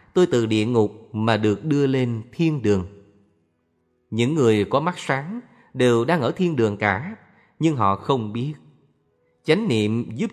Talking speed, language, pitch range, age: 165 wpm, Vietnamese, 110-140 Hz, 30-49